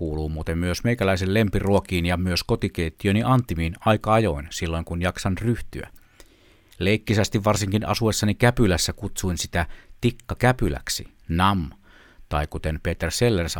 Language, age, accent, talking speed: Finnish, 60-79, native, 120 wpm